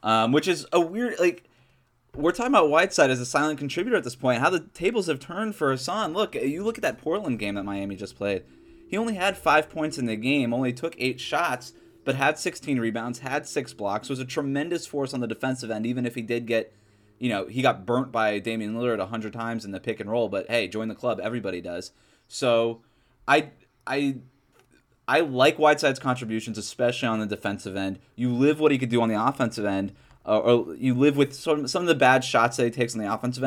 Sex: male